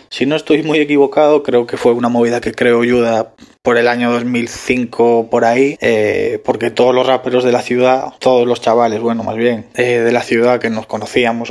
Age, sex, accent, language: 20-39, male, Spanish, Spanish